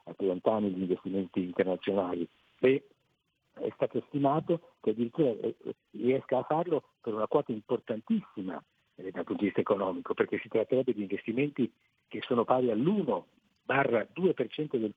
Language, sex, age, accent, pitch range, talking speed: Italian, male, 50-69, native, 95-150 Hz, 135 wpm